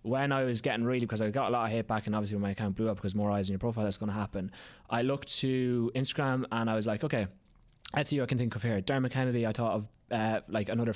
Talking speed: 290 wpm